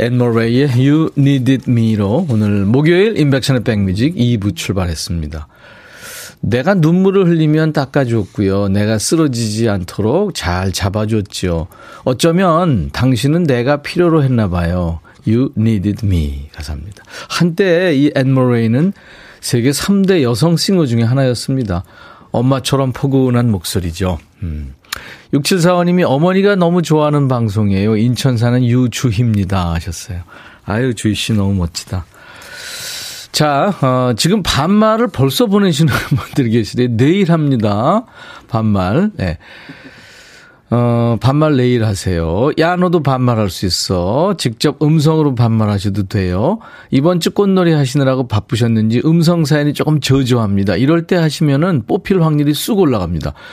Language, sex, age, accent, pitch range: Korean, male, 40-59, native, 105-155 Hz